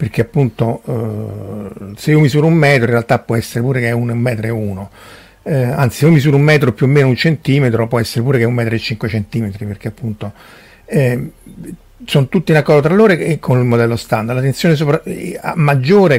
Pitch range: 115-150 Hz